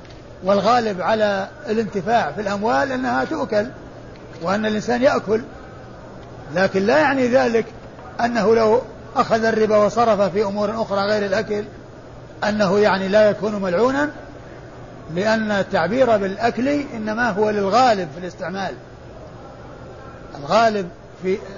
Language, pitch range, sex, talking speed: Arabic, 195-235 Hz, male, 110 wpm